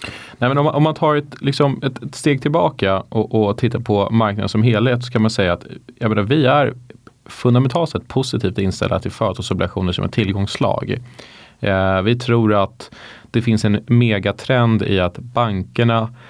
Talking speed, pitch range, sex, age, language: 175 wpm, 95-125 Hz, male, 30-49, Swedish